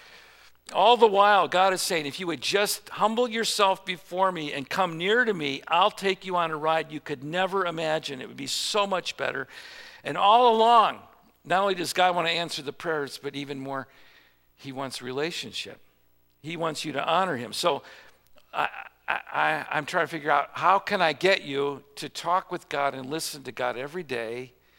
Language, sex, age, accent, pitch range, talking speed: English, male, 50-69, American, 115-170 Hz, 195 wpm